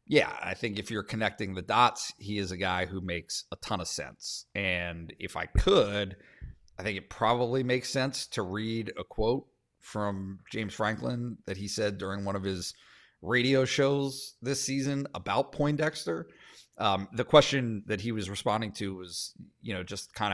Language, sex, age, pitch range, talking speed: English, male, 40-59, 100-130 Hz, 180 wpm